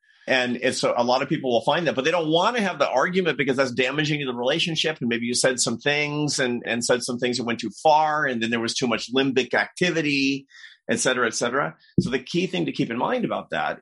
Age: 40-59